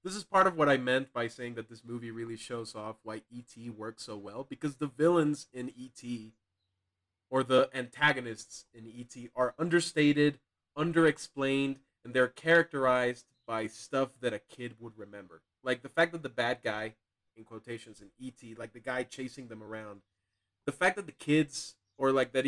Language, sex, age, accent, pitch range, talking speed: English, male, 20-39, American, 110-140 Hz, 180 wpm